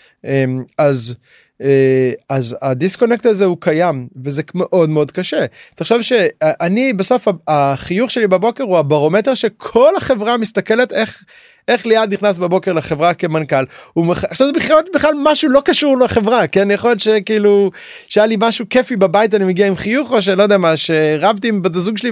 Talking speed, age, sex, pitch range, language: 160 wpm, 30-49, male, 145-215 Hz, Hebrew